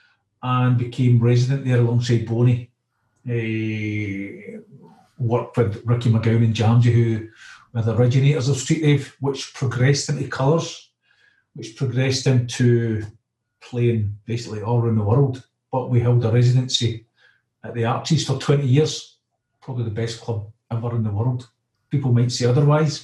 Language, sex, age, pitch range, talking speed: English, male, 40-59, 115-130 Hz, 145 wpm